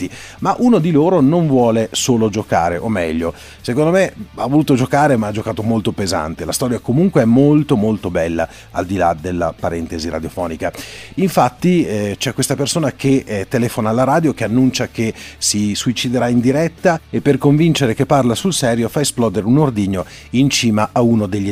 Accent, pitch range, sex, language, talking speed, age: native, 100-135 Hz, male, Italian, 185 wpm, 30-49